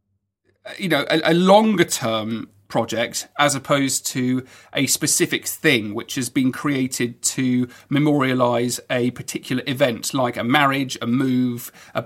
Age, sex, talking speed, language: 40-59, male, 140 wpm, English